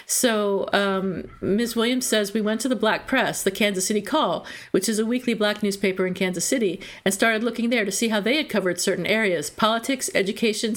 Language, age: English, 50-69